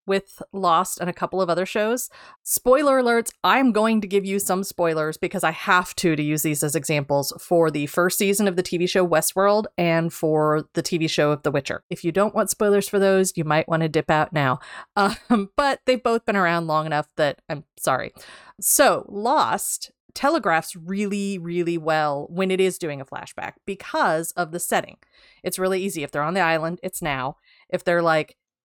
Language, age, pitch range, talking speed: English, 30-49, 160-200 Hz, 205 wpm